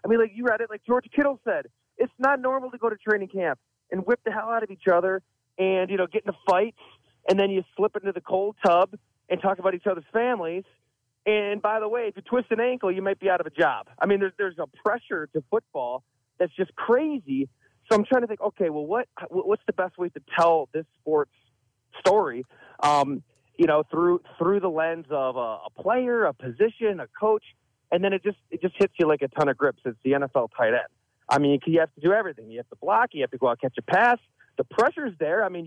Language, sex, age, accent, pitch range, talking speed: English, male, 30-49, American, 150-210 Hz, 250 wpm